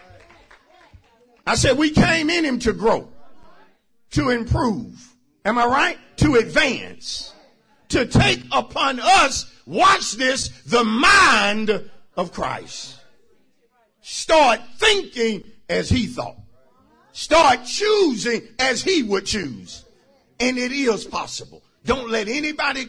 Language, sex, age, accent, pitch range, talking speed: English, male, 50-69, American, 215-320 Hz, 115 wpm